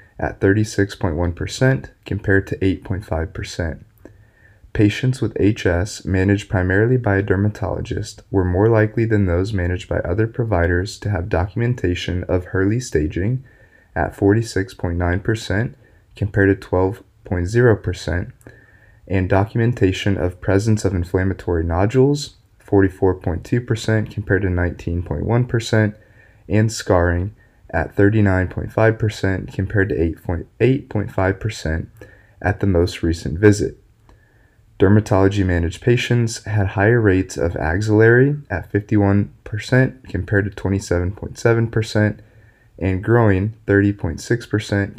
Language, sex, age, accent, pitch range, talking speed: English, male, 20-39, American, 95-110 Hz, 95 wpm